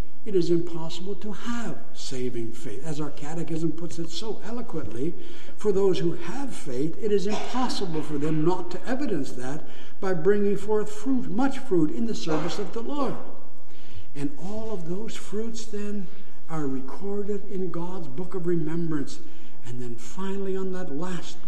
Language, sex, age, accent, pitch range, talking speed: English, male, 60-79, American, 140-205 Hz, 165 wpm